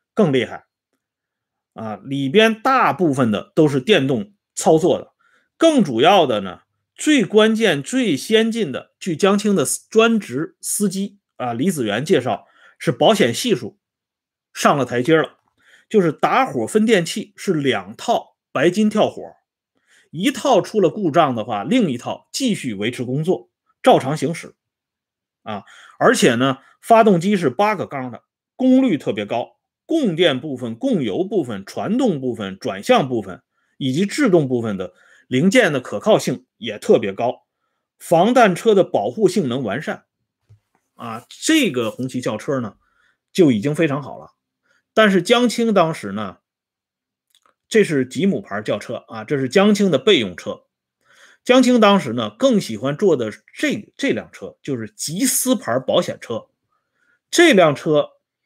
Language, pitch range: Swedish, 135-230 Hz